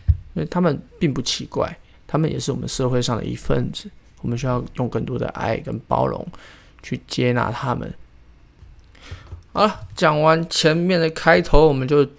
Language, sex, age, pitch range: Chinese, male, 20-39, 90-145 Hz